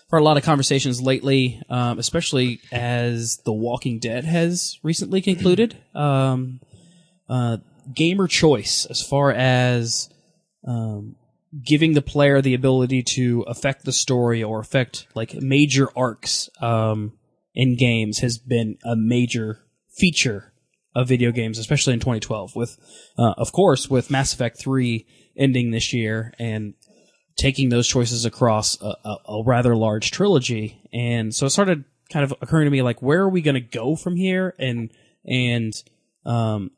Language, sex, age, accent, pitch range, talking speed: English, male, 20-39, American, 120-145 Hz, 155 wpm